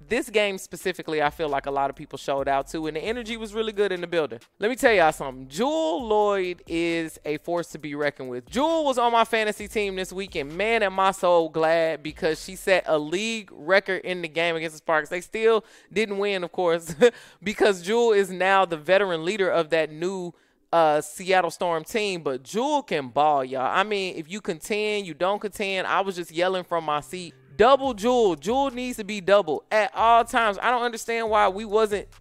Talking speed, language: 220 wpm, English